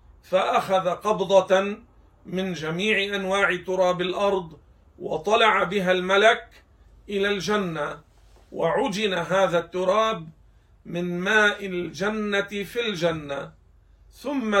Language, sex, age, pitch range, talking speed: Arabic, male, 50-69, 160-200 Hz, 85 wpm